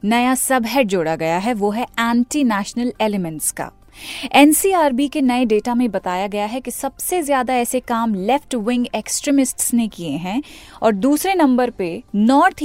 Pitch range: 210-280 Hz